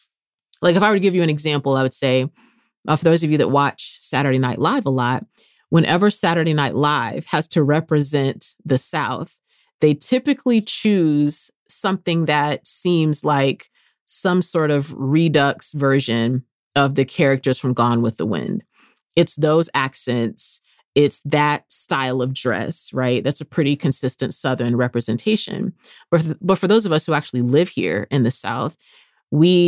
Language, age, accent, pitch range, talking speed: English, 30-49, American, 130-160 Hz, 165 wpm